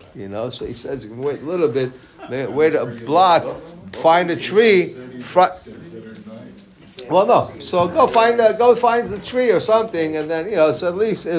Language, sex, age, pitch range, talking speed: English, male, 50-69, 140-175 Hz, 180 wpm